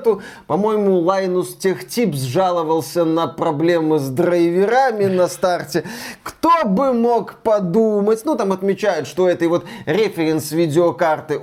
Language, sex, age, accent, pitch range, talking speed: Russian, male, 20-39, native, 155-195 Hz, 115 wpm